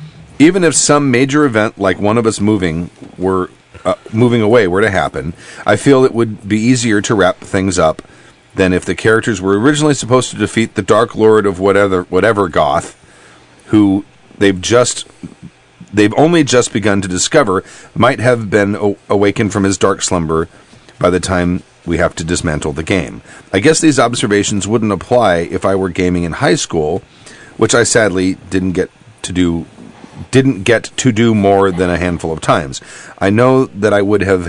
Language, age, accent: English, 40-59, American